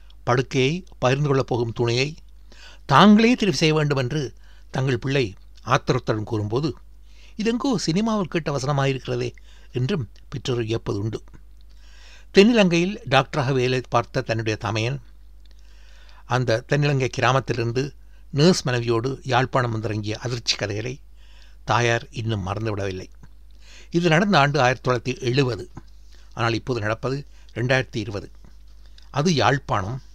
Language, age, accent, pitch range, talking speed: Tamil, 60-79, native, 105-140 Hz, 100 wpm